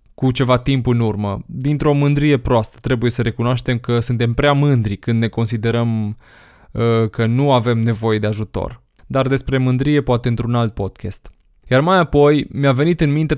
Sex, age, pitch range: male, 20-39, 120-145 Hz